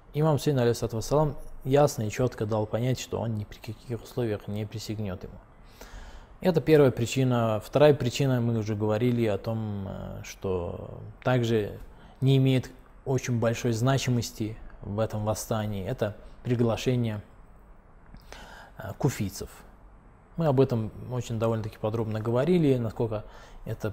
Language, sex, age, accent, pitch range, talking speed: Russian, male, 20-39, native, 110-125 Hz, 125 wpm